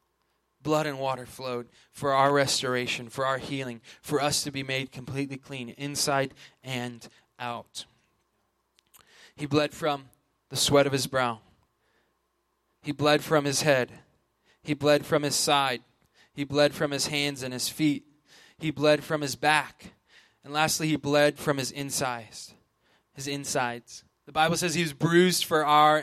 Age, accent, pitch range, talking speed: 20-39, American, 140-175 Hz, 155 wpm